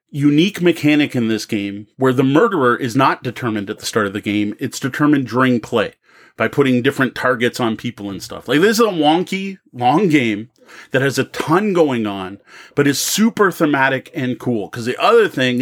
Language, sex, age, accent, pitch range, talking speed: English, male, 30-49, American, 125-160 Hz, 200 wpm